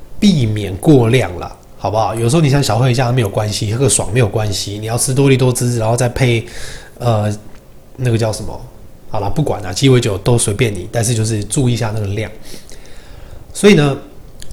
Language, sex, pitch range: Chinese, male, 105-130 Hz